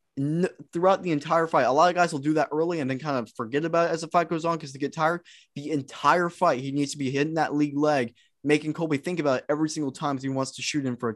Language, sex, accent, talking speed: English, male, American, 290 wpm